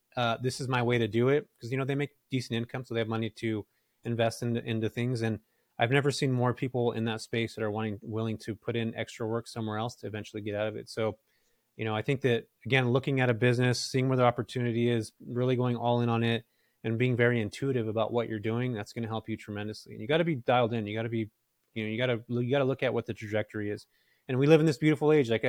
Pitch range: 115-130 Hz